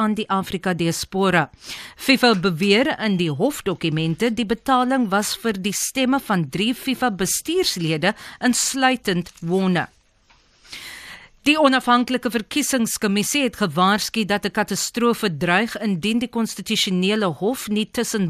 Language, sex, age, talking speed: English, female, 50-69, 120 wpm